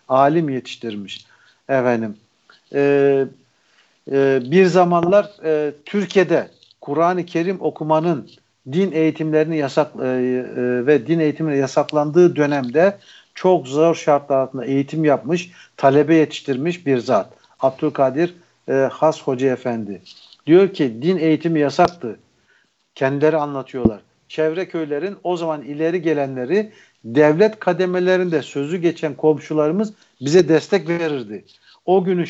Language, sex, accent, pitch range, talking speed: Turkish, male, native, 140-180 Hz, 110 wpm